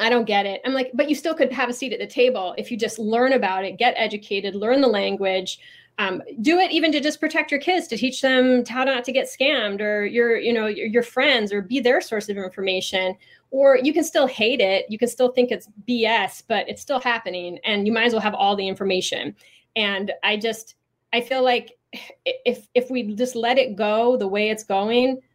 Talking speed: 230 wpm